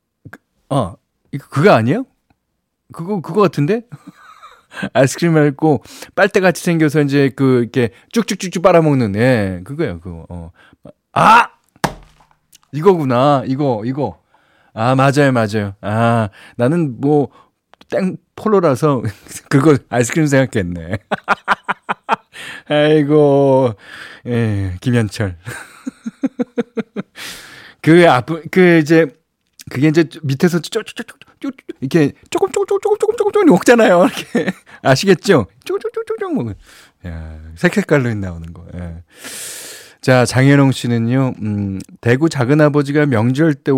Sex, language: male, Korean